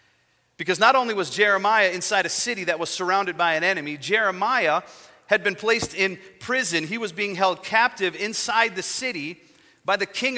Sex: male